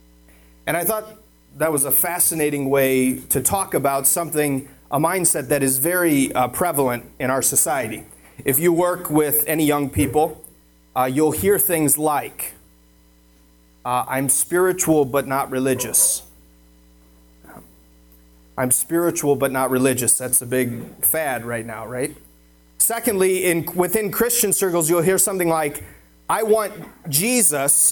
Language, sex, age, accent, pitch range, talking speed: English, male, 30-49, American, 110-175 Hz, 140 wpm